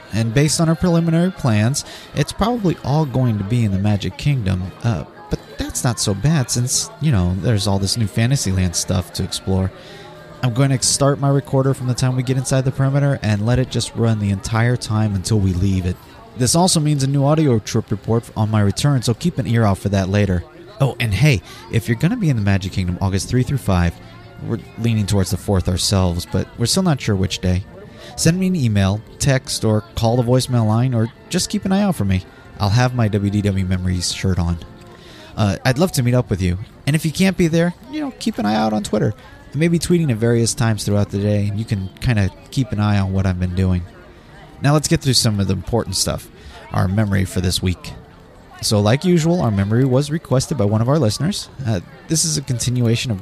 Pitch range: 100-135 Hz